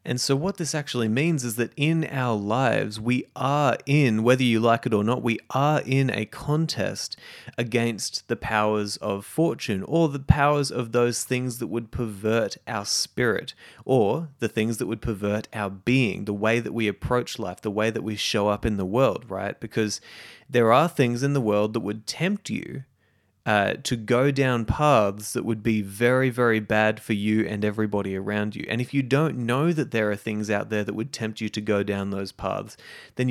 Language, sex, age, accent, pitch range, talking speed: English, male, 20-39, Australian, 105-130 Hz, 205 wpm